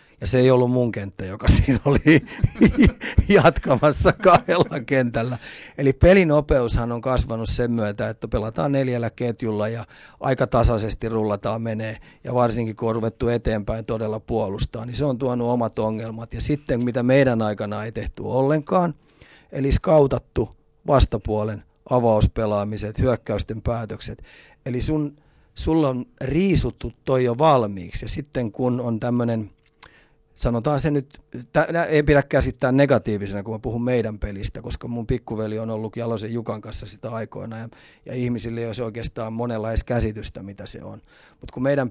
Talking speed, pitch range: 145 wpm, 110-130 Hz